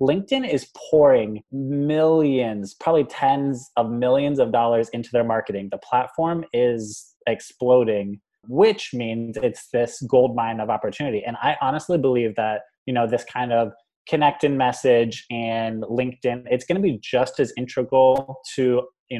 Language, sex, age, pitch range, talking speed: English, male, 20-39, 115-130 Hz, 145 wpm